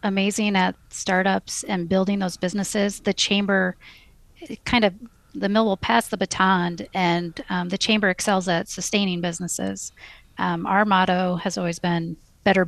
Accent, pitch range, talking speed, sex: American, 185-205 Hz, 150 wpm, female